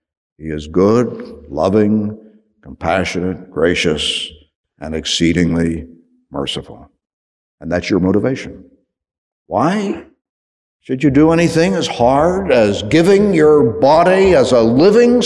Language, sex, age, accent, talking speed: English, male, 60-79, American, 105 wpm